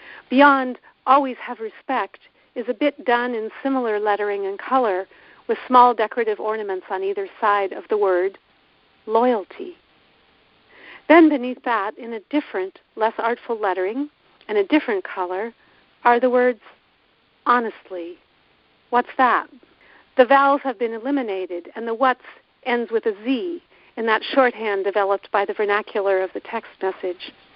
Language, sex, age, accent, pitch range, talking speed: English, female, 50-69, American, 205-260 Hz, 145 wpm